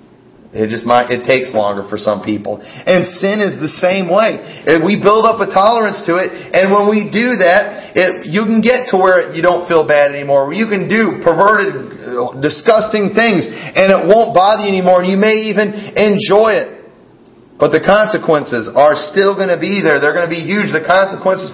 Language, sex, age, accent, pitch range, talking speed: English, male, 40-59, American, 145-195 Hz, 200 wpm